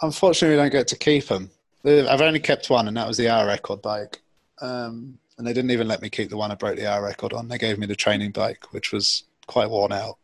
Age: 20-39